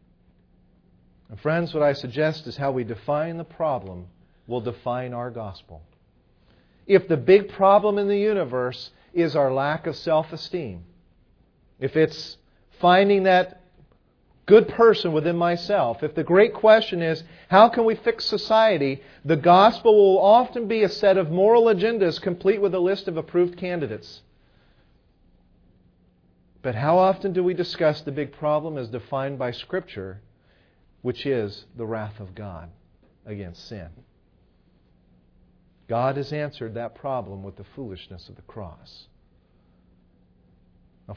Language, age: English, 40-59